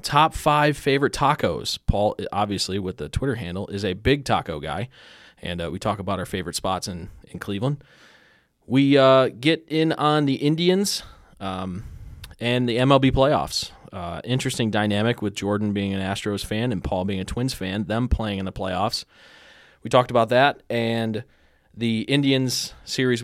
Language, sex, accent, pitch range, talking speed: English, male, American, 100-125 Hz, 170 wpm